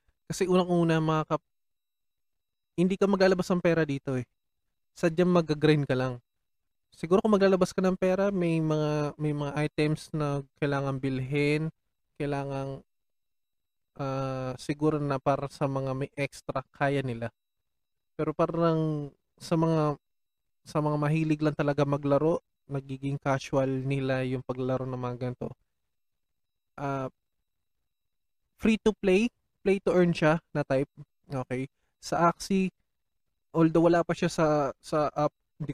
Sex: male